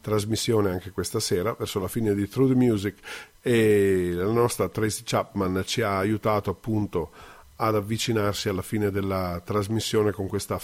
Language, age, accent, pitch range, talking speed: Italian, 50-69, native, 100-115 Hz, 160 wpm